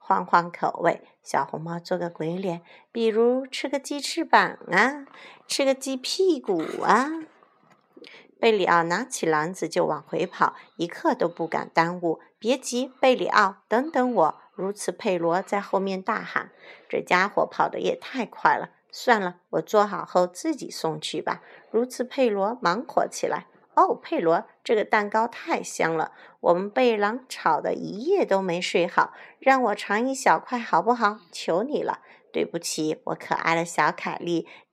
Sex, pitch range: female, 180-260 Hz